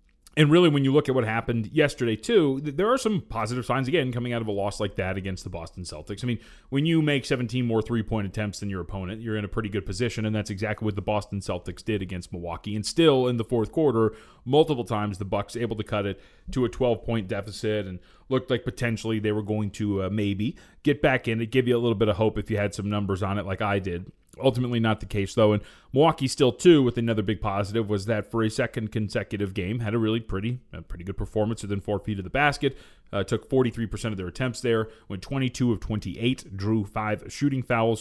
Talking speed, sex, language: 240 wpm, male, English